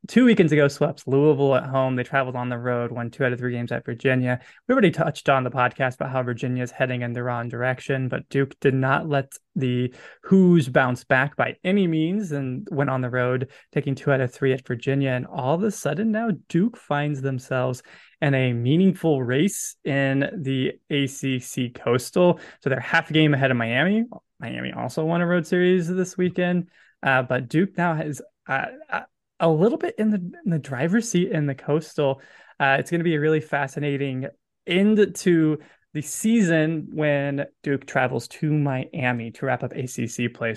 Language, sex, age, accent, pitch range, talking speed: English, male, 20-39, American, 130-165 Hz, 195 wpm